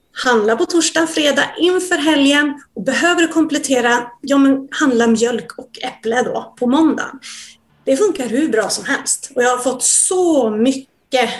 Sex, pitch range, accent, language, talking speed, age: female, 230-290 Hz, native, Swedish, 160 wpm, 30-49